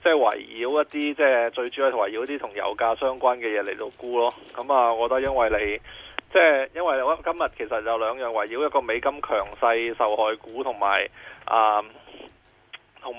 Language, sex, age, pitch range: Chinese, male, 20-39, 115-140 Hz